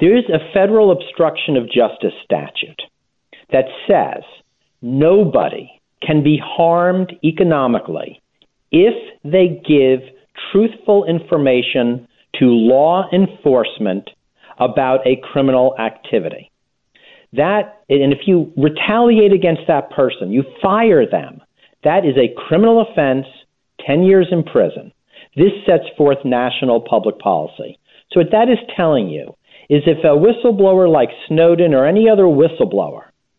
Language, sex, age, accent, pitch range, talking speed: English, male, 50-69, American, 140-190 Hz, 125 wpm